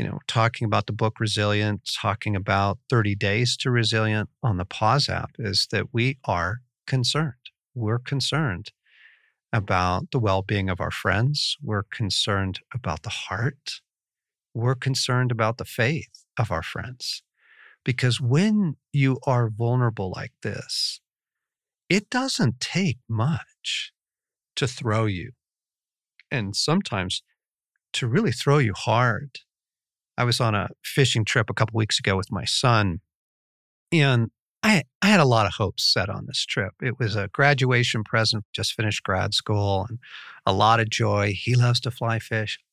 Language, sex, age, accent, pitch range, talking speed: English, male, 50-69, American, 105-135 Hz, 150 wpm